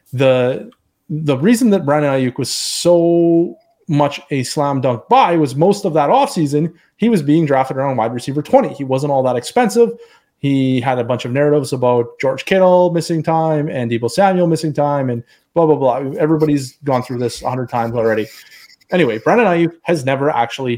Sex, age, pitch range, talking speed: male, 30-49, 125-165 Hz, 185 wpm